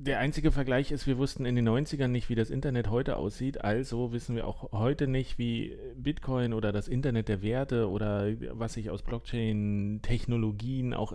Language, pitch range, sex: German, 95-120 Hz, male